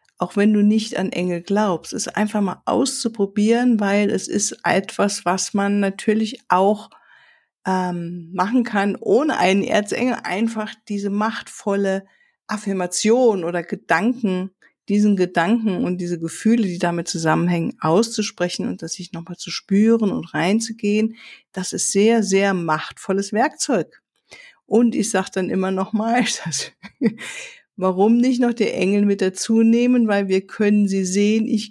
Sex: female